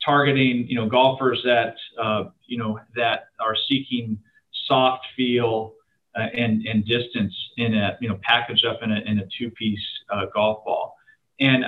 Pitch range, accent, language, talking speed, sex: 115-140 Hz, American, English, 165 wpm, male